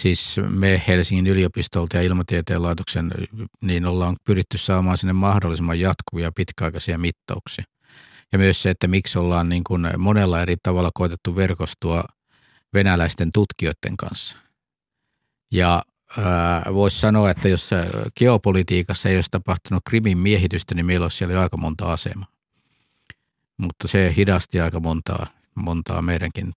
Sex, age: male, 50-69